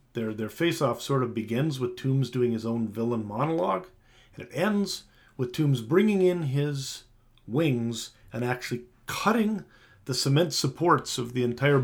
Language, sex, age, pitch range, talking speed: English, male, 40-59, 115-135 Hz, 155 wpm